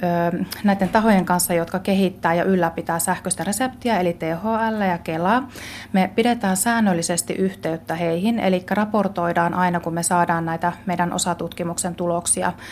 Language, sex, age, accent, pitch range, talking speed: Finnish, female, 30-49, native, 170-195 Hz, 130 wpm